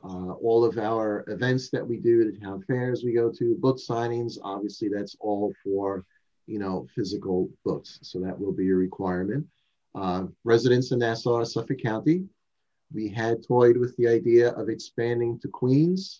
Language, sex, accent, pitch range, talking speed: English, male, American, 105-130 Hz, 170 wpm